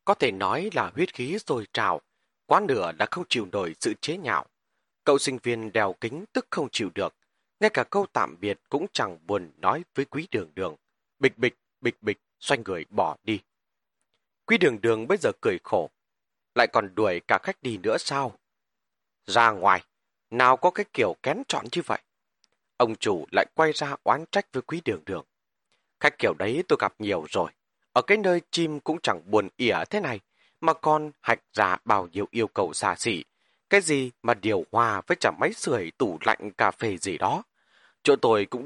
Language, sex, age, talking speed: Vietnamese, male, 30-49, 200 wpm